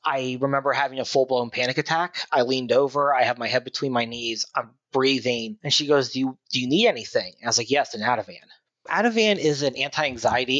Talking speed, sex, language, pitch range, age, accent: 220 wpm, male, English, 130-155 Hz, 30-49, American